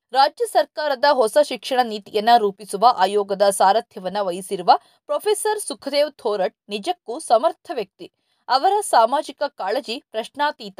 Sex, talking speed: female, 105 wpm